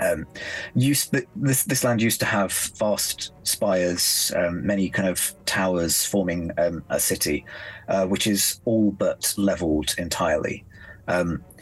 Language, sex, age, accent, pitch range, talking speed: English, male, 30-49, British, 90-105 Hz, 140 wpm